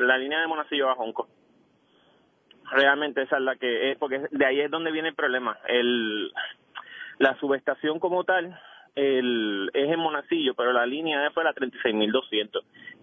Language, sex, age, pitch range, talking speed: Spanish, male, 30-49, 125-160 Hz, 150 wpm